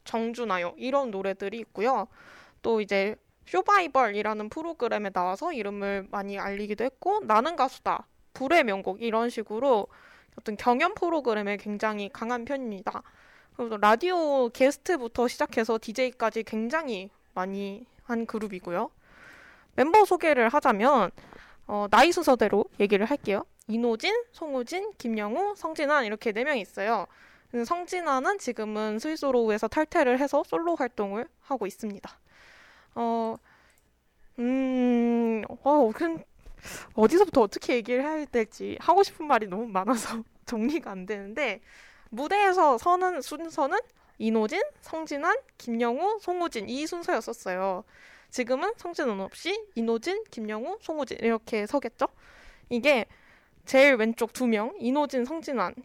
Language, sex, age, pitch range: Korean, female, 20-39, 215-300 Hz